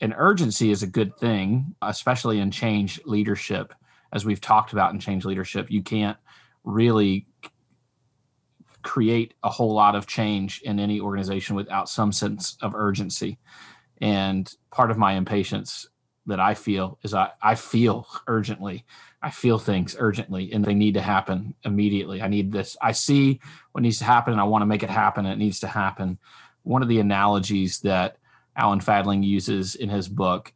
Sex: male